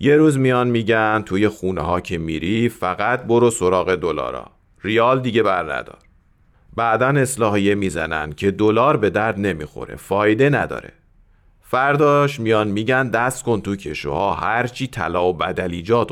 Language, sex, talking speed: Persian, male, 140 wpm